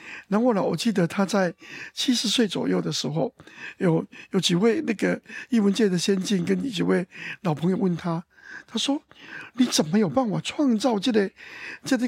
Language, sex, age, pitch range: Chinese, male, 60-79, 190-255 Hz